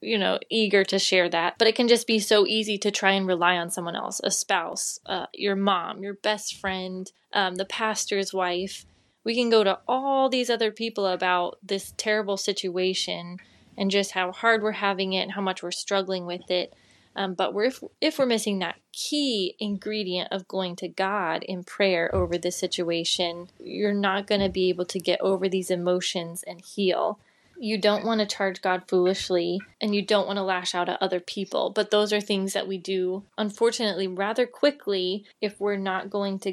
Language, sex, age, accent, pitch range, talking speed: English, female, 20-39, American, 185-210 Hz, 200 wpm